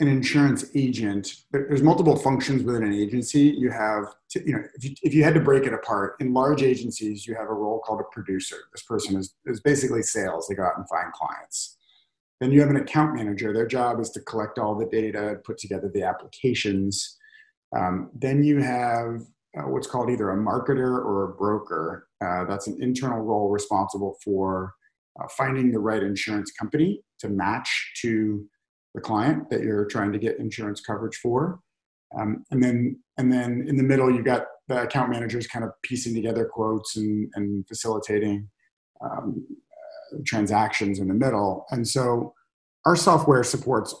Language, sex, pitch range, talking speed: English, male, 105-140 Hz, 185 wpm